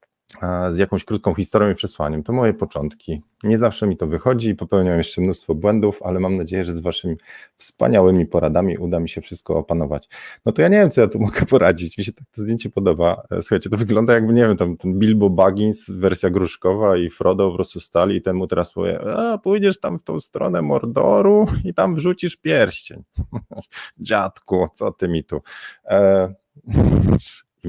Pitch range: 85-110 Hz